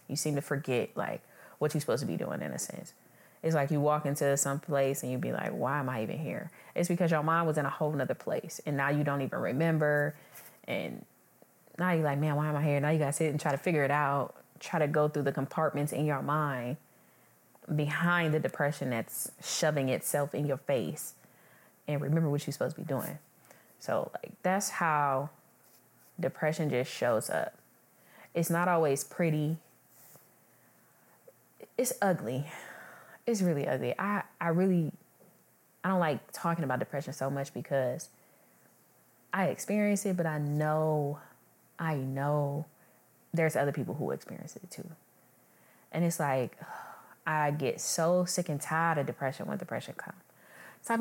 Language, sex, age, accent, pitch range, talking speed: English, female, 20-39, American, 140-170 Hz, 180 wpm